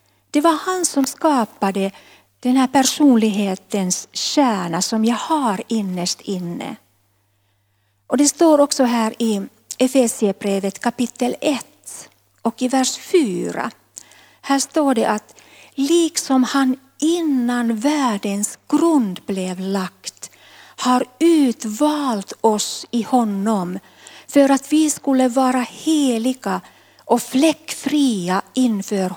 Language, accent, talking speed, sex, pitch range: Swedish, native, 105 wpm, female, 190-280 Hz